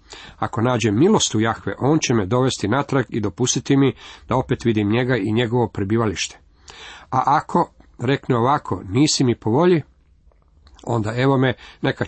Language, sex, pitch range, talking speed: Croatian, male, 110-130 Hz, 160 wpm